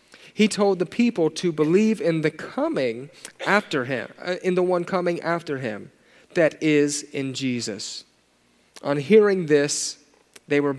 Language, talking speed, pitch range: English, 145 wpm, 125-180 Hz